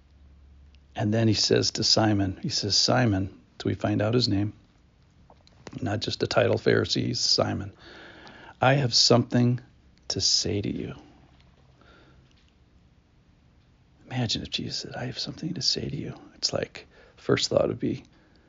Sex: male